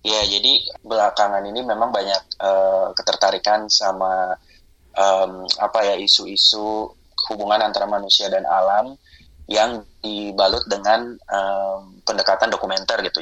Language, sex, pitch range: Indonesian, male, 95-110 Hz